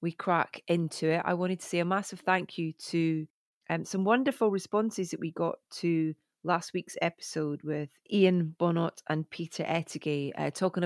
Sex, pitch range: female, 155-185 Hz